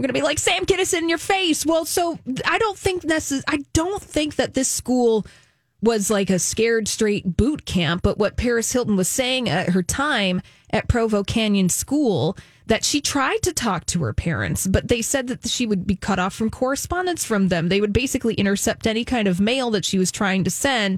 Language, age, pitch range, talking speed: English, 20-39, 190-255 Hz, 225 wpm